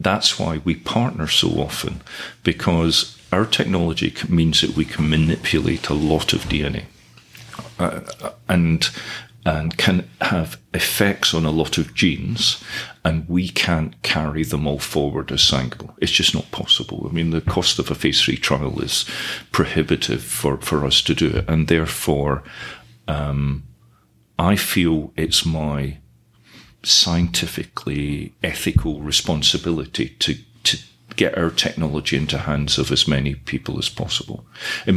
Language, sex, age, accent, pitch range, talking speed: English, male, 40-59, British, 70-85 Hz, 145 wpm